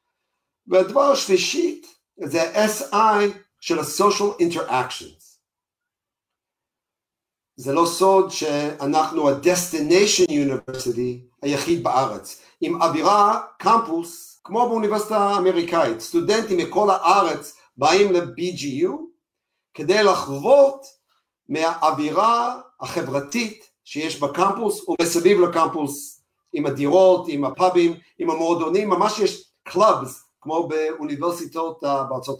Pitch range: 155-245 Hz